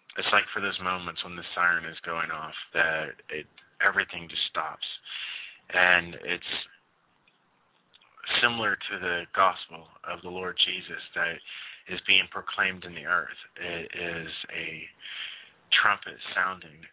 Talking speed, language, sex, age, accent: 130 wpm, English, male, 20-39, American